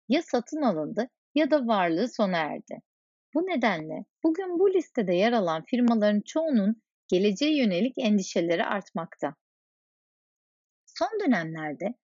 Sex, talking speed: female, 115 wpm